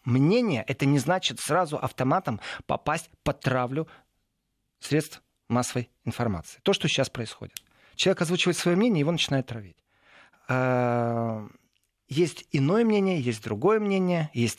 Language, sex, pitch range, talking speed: Russian, male, 125-175 Hz, 130 wpm